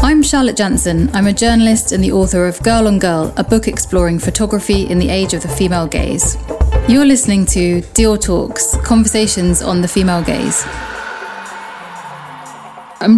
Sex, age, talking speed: female, 20-39, 160 wpm